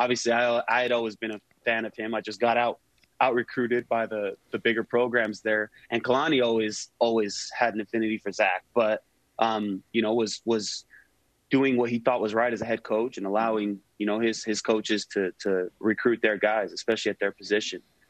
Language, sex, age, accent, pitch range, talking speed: English, male, 30-49, American, 105-115 Hz, 210 wpm